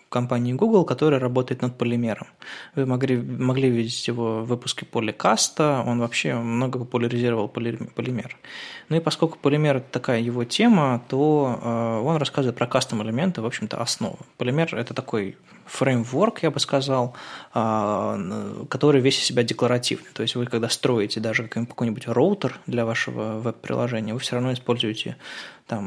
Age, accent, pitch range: 20-39, native, 120-140 Hz